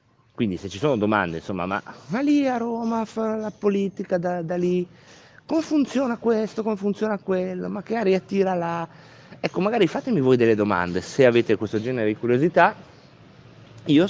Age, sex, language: 30-49, male, Italian